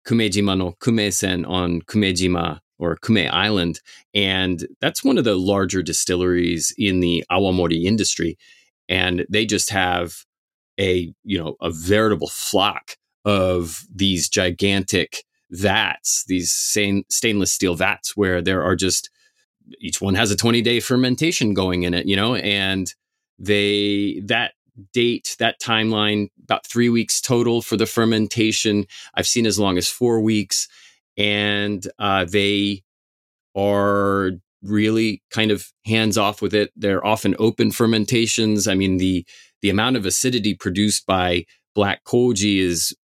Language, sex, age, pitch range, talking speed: English, male, 30-49, 90-105 Hz, 140 wpm